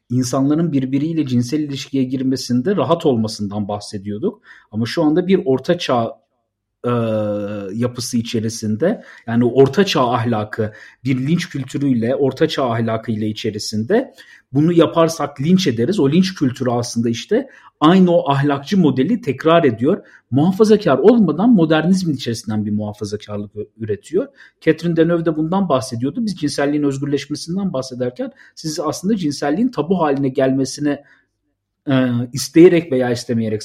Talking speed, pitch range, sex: 115 wpm, 120-170 Hz, male